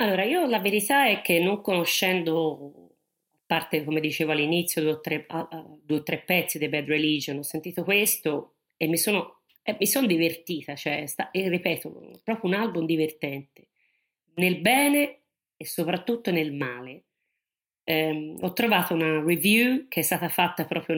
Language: Italian